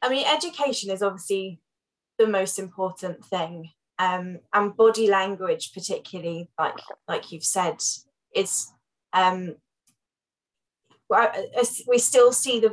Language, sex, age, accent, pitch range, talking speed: Ukrainian, female, 10-29, British, 185-230 Hz, 115 wpm